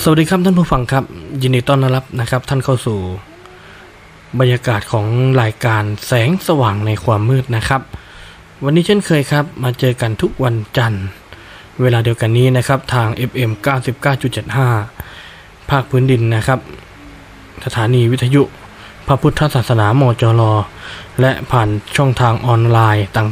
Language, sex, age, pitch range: Thai, male, 20-39, 110-135 Hz